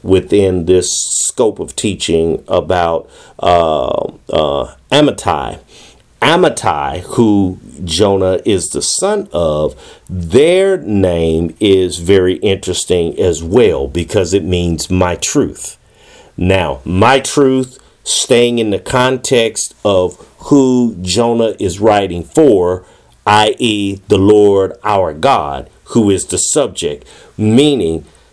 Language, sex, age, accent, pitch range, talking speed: English, male, 50-69, American, 90-125 Hz, 110 wpm